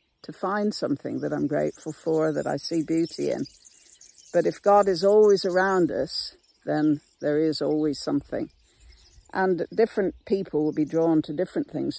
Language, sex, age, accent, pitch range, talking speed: English, female, 60-79, British, 150-185 Hz, 165 wpm